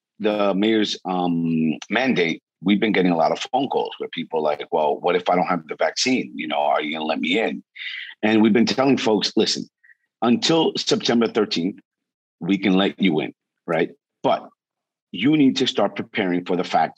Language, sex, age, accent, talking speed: English, male, 50-69, American, 195 wpm